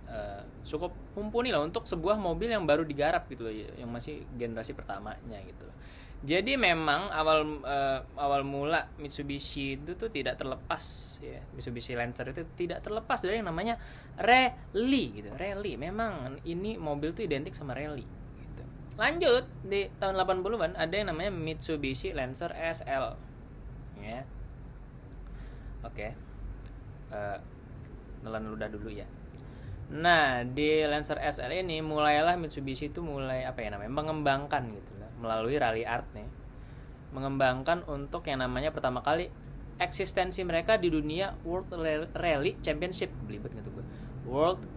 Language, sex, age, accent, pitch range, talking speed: Indonesian, male, 20-39, native, 130-170 Hz, 135 wpm